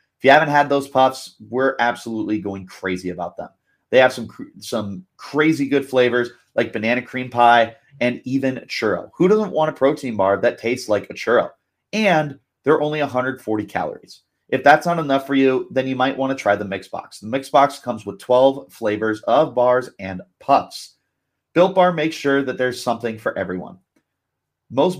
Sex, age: male, 30-49